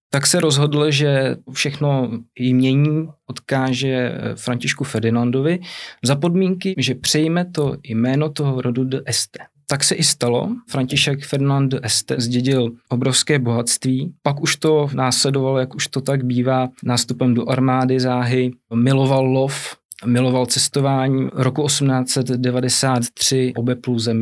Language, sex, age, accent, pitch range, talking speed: Czech, male, 20-39, native, 120-140 Hz, 120 wpm